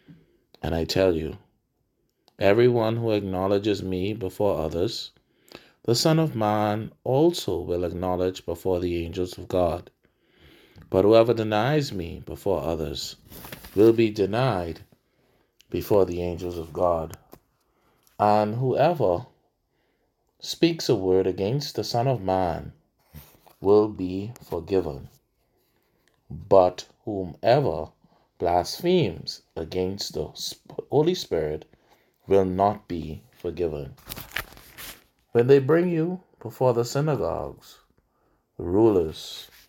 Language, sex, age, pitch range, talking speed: English, male, 30-49, 90-120 Hz, 105 wpm